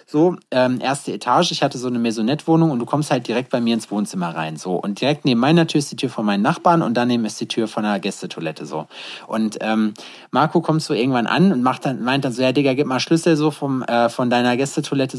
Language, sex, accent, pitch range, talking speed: German, male, German, 120-155 Hz, 255 wpm